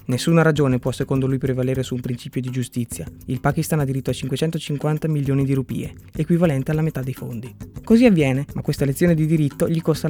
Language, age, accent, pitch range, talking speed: Italian, 20-39, native, 130-155 Hz, 200 wpm